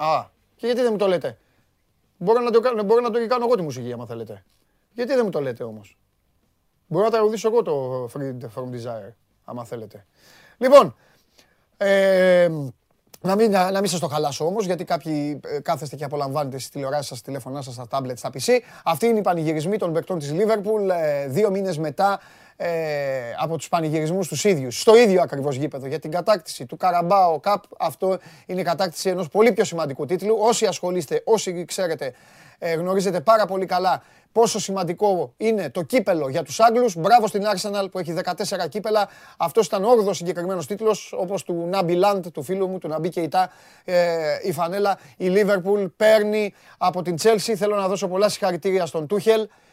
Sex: male